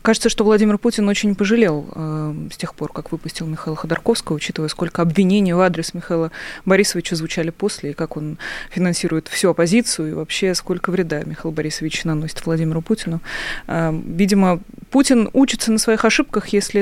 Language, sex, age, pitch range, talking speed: Russian, female, 20-39, 170-215 Hz, 155 wpm